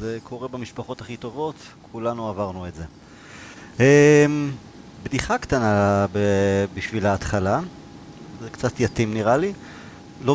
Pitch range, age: 105-145 Hz, 30-49